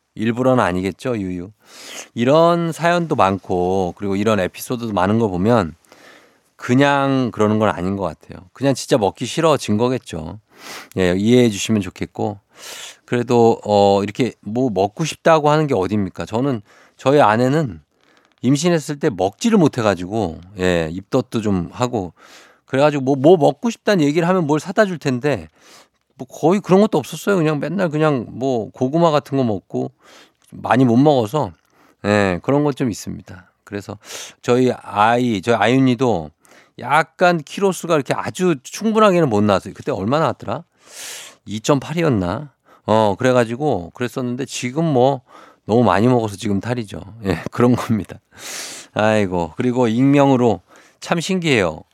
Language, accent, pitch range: Korean, native, 100-145 Hz